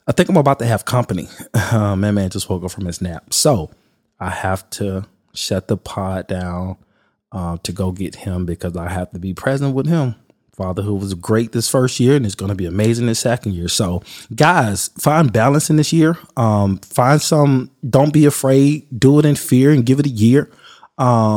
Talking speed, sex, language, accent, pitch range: 215 wpm, male, English, American, 105-140 Hz